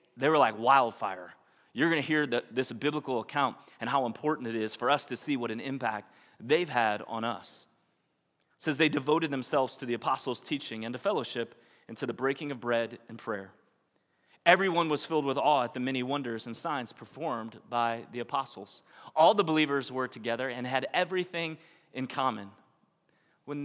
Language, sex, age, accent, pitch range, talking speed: English, male, 30-49, American, 120-155 Hz, 185 wpm